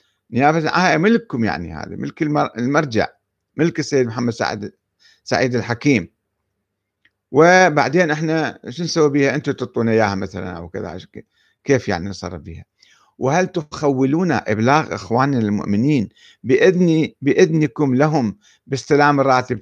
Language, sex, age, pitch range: Arabic, male, 50-69, 105-150 Hz